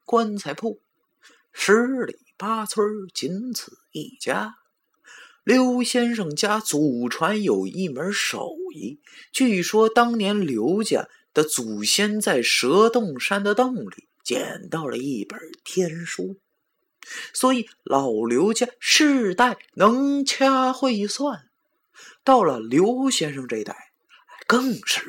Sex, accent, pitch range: male, native, 185-250 Hz